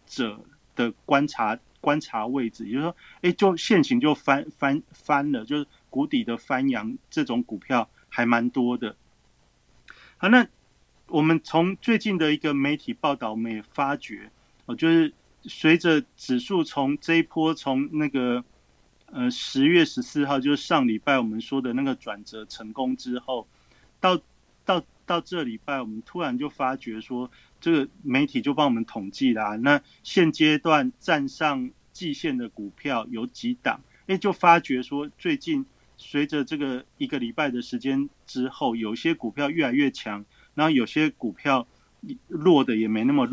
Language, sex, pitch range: Chinese, male, 125-195 Hz